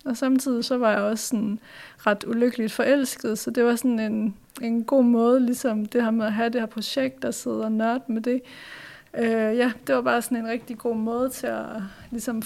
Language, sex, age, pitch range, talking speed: Danish, female, 30-49, 220-250 Hz, 220 wpm